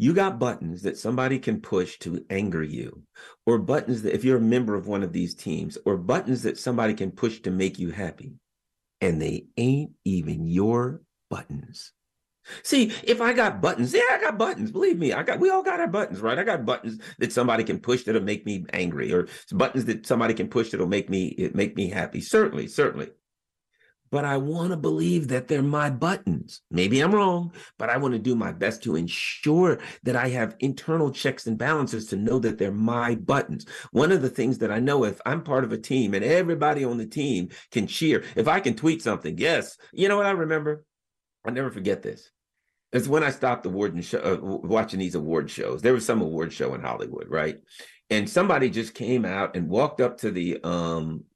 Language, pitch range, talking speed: English, 105-155 Hz, 215 wpm